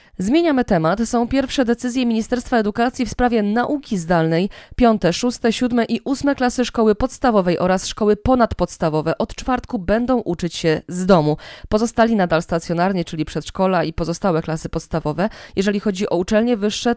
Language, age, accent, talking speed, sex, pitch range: Polish, 20-39, native, 150 wpm, female, 175-235 Hz